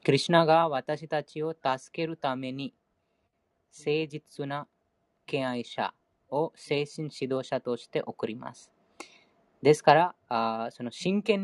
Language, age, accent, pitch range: Japanese, 20-39, Indian, 130-165 Hz